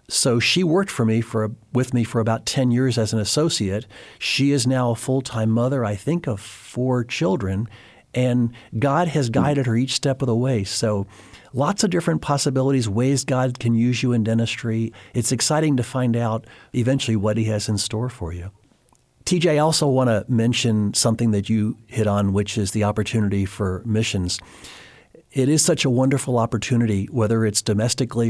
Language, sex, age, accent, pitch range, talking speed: English, male, 50-69, American, 105-130 Hz, 185 wpm